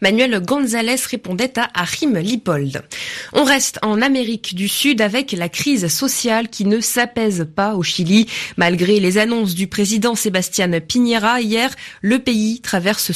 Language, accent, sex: French, French, female